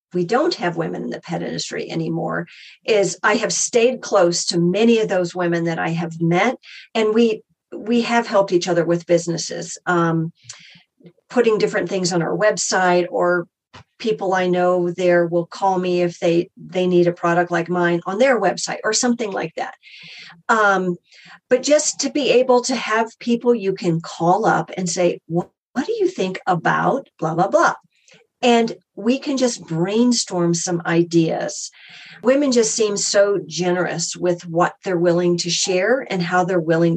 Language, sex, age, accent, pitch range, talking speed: English, female, 40-59, American, 175-220 Hz, 175 wpm